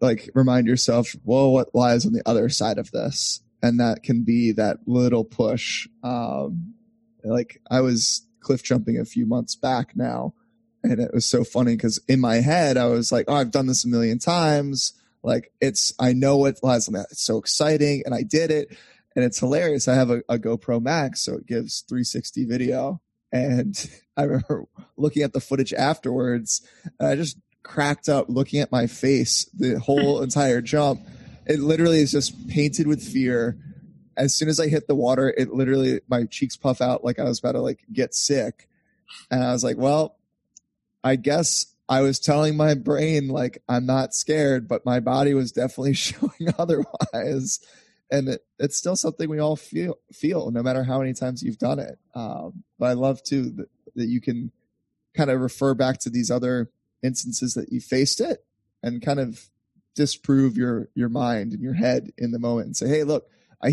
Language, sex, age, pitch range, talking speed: English, male, 20-39, 120-145 Hz, 195 wpm